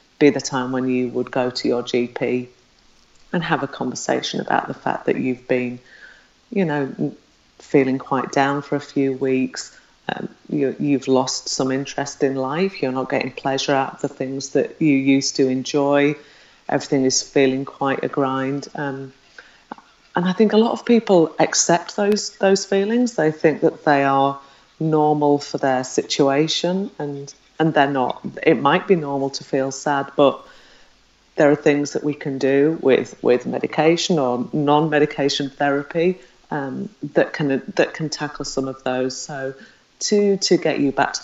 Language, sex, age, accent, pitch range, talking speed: English, female, 30-49, British, 130-150 Hz, 170 wpm